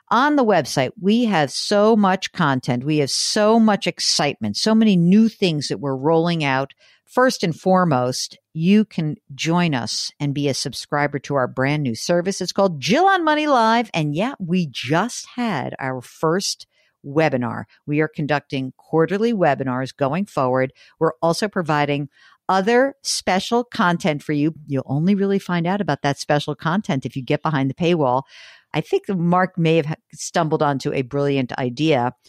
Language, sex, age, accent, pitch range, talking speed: English, female, 50-69, American, 140-190 Hz, 170 wpm